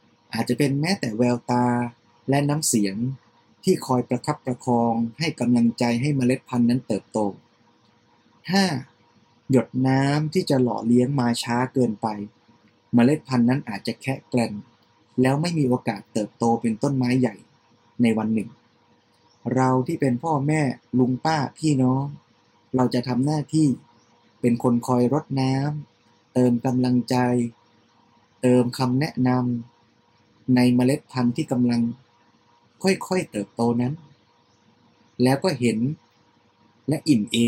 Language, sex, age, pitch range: Thai, male, 20-39, 115-135 Hz